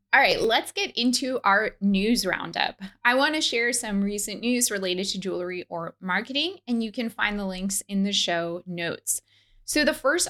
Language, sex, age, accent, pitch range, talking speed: English, female, 20-39, American, 190-240 Hz, 190 wpm